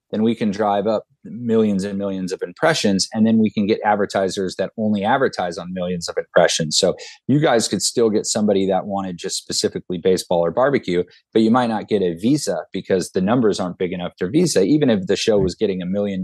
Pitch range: 90-110 Hz